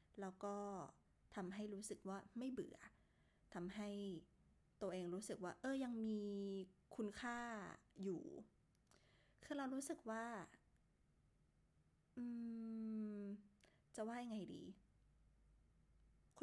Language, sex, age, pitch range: Thai, female, 20-39, 175-220 Hz